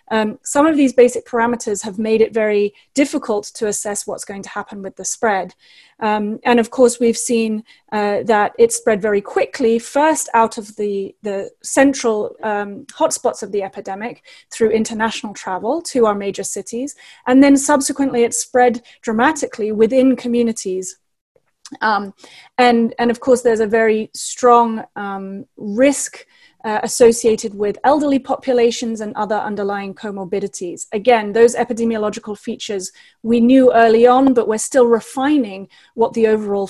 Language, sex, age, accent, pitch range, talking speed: English, female, 30-49, British, 210-250 Hz, 150 wpm